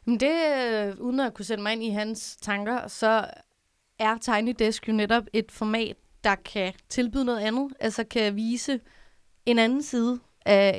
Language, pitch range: Danish, 195-235 Hz